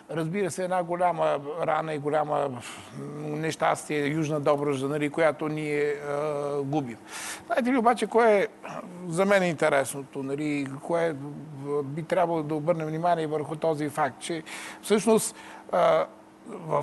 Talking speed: 130 wpm